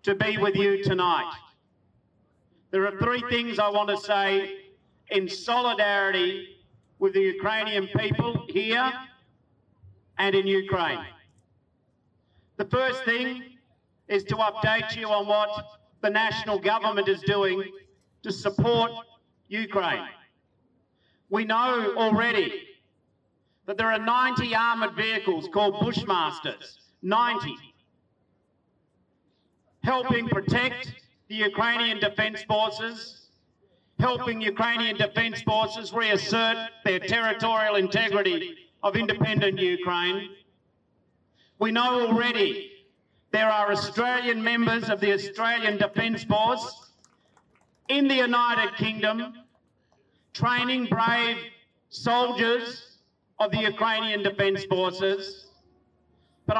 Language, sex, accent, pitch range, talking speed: Ukrainian, male, Australian, 200-235 Hz, 100 wpm